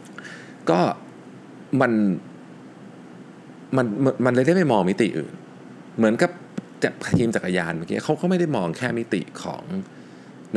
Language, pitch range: Thai, 70-115 Hz